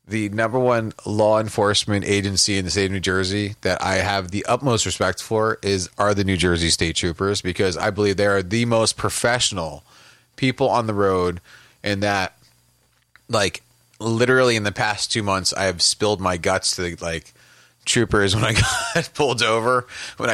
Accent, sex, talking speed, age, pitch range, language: American, male, 180 wpm, 30-49, 90-110 Hz, English